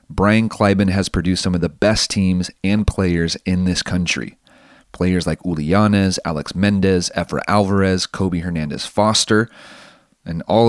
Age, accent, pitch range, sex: 30-49, American, 90-110 Hz, male